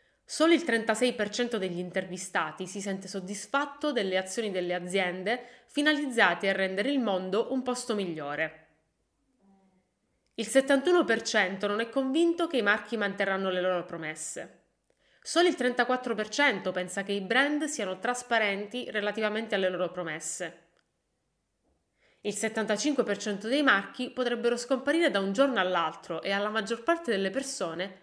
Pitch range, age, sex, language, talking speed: 185-260 Hz, 20-39, female, Italian, 130 wpm